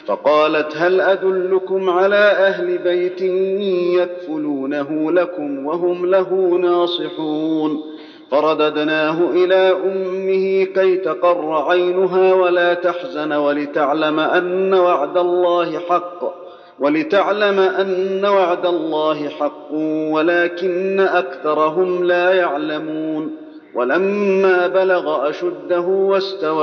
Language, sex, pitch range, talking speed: Arabic, male, 155-190 Hz, 85 wpm